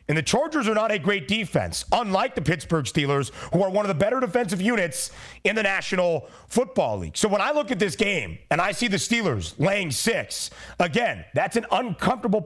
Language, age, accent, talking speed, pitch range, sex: English, 30-49, American, 205 wpm, 170-220 Hz, male